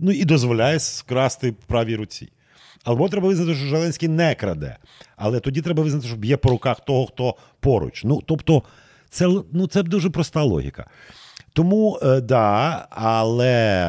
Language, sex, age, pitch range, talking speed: Ukrainian, male, 40-59, 110-155 Hz, 155 wpm